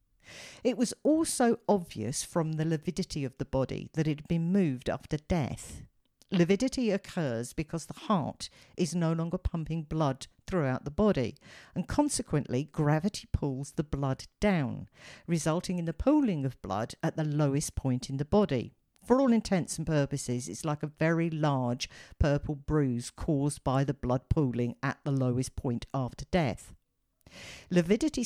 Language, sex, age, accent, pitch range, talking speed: English, female, 50-69, British, 135-180 Hz, 155 wpm